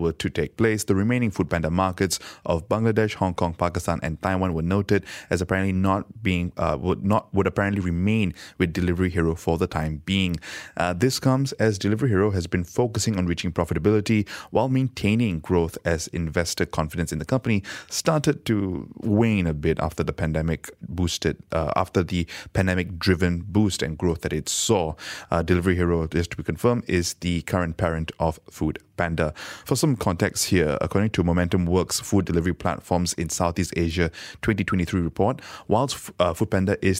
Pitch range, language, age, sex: 85-105 Hz, English, 20-39, male